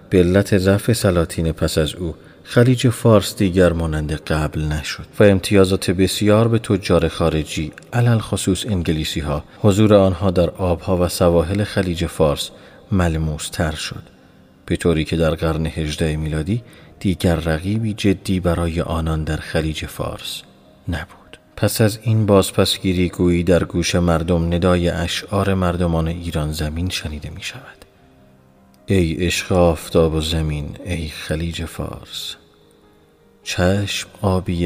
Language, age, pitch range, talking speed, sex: Persian, 40-59, 80-100 Hz, 130 wpm, male